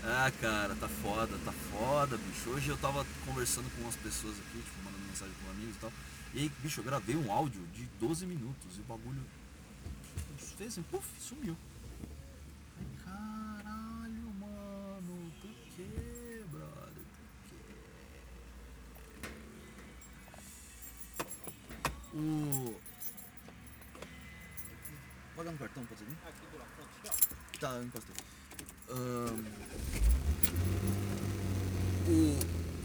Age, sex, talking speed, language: 30-49, male, 115 wpm, Portuguese